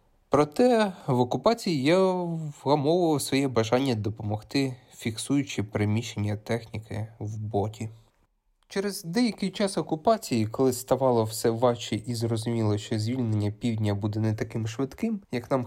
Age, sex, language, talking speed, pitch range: 20-39, male, Ukrainian, 125 wpm, 110-150 Hz